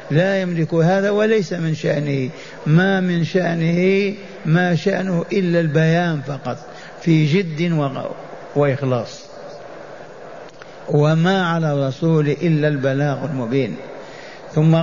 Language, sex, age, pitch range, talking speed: Arabic, male, 50-69, 165-180 Hz, 95 wpm